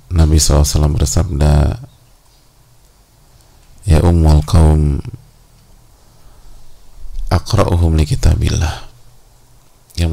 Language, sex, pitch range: English, male, 80-115 Hz